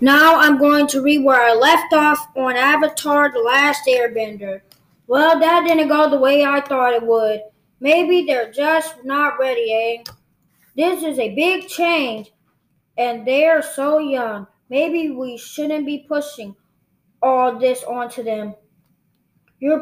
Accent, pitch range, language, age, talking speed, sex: American, 240-290 Hz, English, 20-39, 150 wpm, female